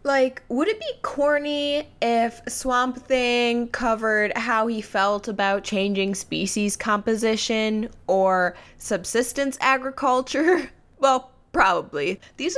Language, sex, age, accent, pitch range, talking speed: English, female, 20-39, American, 190-235 Hz, 105 wpm